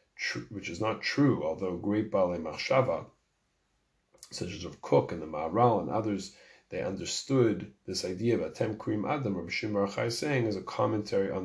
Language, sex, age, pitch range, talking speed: English, male, 40-59, 95-115 Hz, 175 wpm